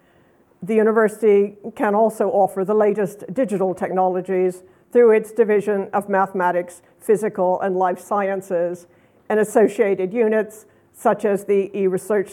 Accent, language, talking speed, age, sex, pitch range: American, English, 120 wpm, 60-79, female, 185-210 Hz